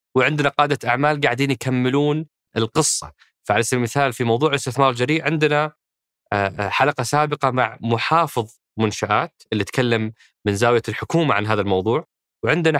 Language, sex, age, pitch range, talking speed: Arabic, male, 20-39, 115-150 Hz, 130 wpm